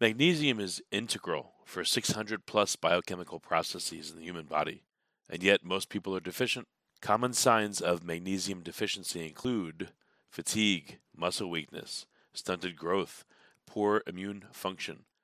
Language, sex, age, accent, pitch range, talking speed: English, male, 40-59, American, 85-105 Hz, 120 wpm